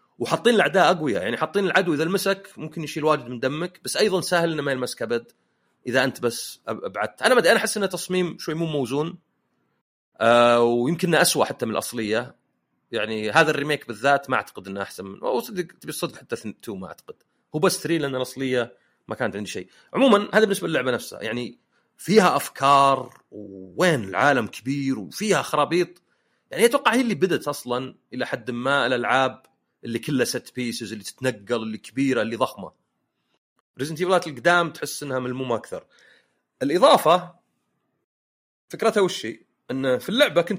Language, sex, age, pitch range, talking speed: Arabic, male, 30-49, 120-175 Hz, 165 wpm